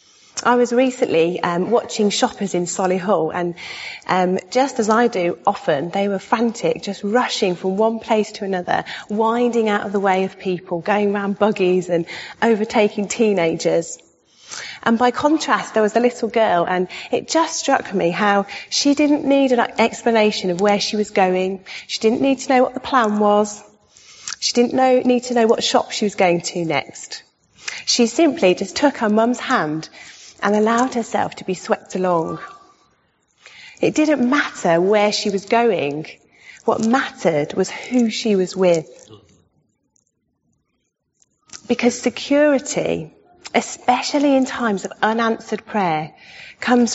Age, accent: 30-49, British